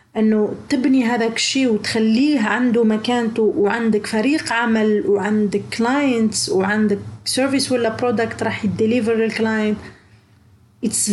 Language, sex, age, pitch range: Arabic, female, 30-49, 215-260 Hz